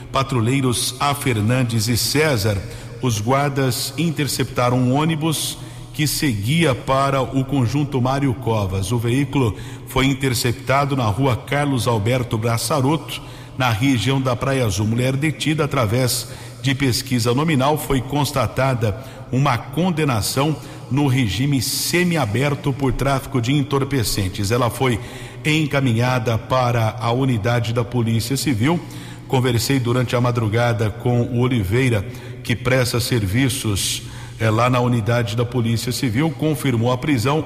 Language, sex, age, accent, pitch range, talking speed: Portuguese, male, 50-69, Brazilian, 120-135 Hz, 120 wpm